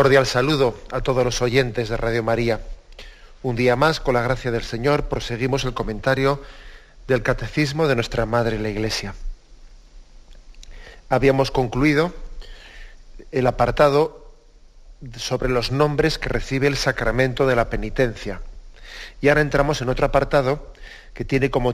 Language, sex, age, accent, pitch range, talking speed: Spanish, male, 40-59, Spanish, 115-145 Hz, 140 wpm